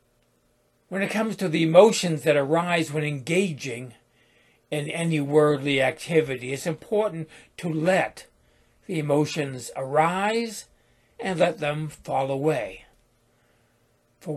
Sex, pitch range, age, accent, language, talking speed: male, 145-180 Hz, 60-79, American, English, 115 wpm